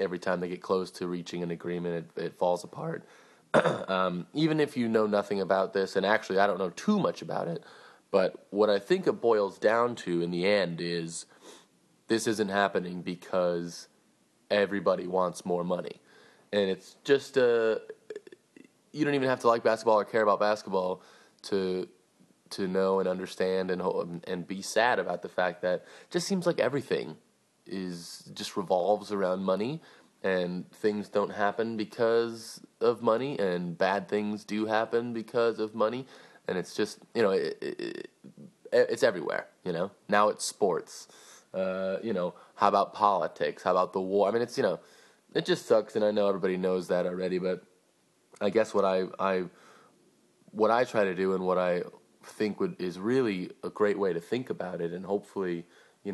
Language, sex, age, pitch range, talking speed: English, male, 20-39, 90-115 Hz, 185 wpm